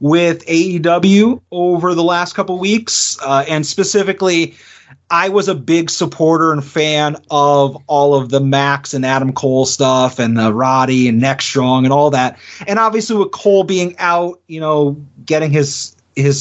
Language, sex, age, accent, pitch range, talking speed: English, male, 30-49, American, 135-170 Hz, 170 wpm